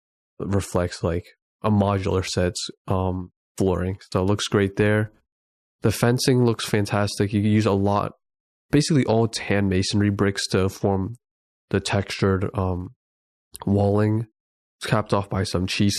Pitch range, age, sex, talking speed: 95-105 Hz, 20-39, male, 145 wpm